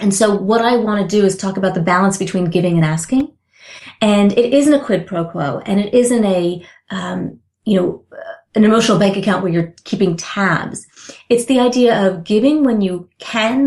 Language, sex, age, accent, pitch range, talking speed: English, female, 30-49, American, 185-235 Hz, 200 wpm